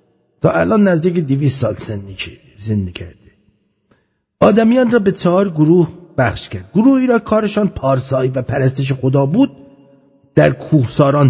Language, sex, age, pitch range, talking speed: English, male, 50-69, 115-195 Hz, 140 wpm